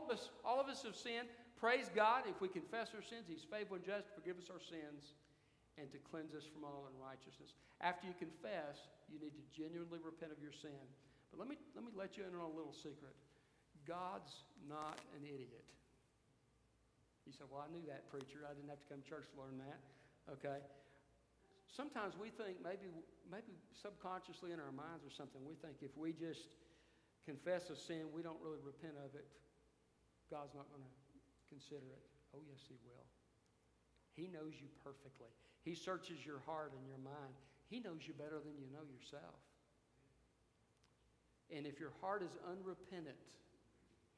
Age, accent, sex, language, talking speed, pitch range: 60-79, American, male, English, 180 wpm, 135-165 Hz